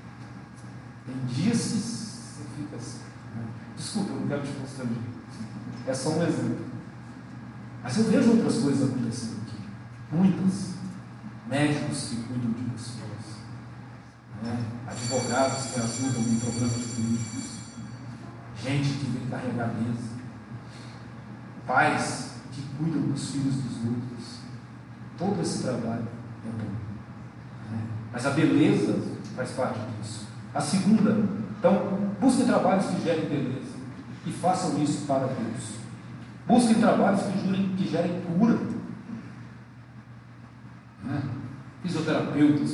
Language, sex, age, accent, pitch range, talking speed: Portuguese, male, 40-59, Brazilian, 115-145 Hz, 115 wpm